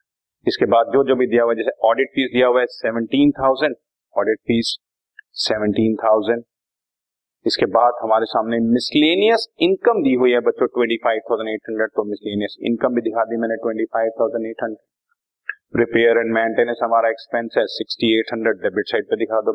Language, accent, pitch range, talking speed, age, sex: Hindi, native, 115-155 Hz, 90 wpm, 30-49, male